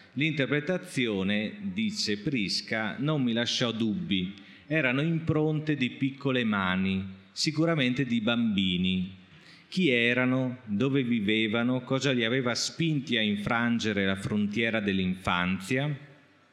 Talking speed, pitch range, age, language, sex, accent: 100 wpm, 105-135 Hz, 40-59, Italian, male, native